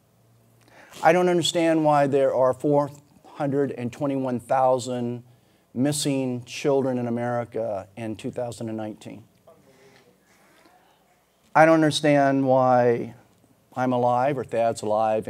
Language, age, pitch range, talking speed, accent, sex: English, 40-59, 115-140 Hz, 85 wpm, American, male